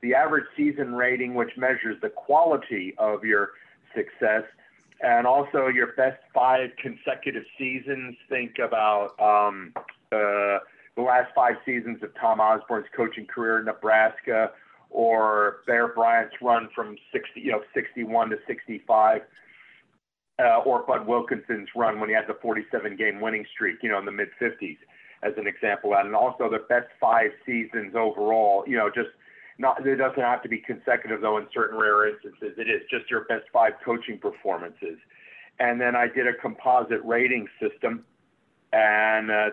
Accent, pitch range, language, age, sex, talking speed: American, 110-135 Hz, English, 50-69, male, 160 wpm